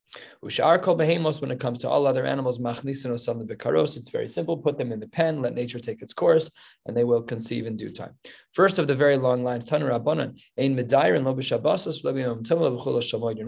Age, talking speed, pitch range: 20-39, 150 wpm, 115-145 Hz